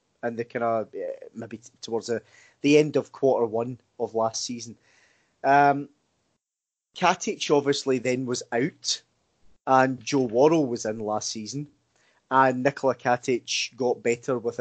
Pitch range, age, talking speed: 120-145 Hz, 20-39, 145 wpm